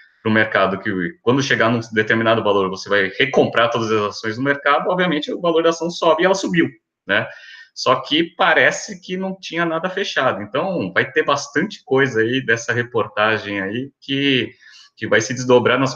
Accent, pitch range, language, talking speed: Brazilian, 100-155 Hz, Portuguese, 190 wpm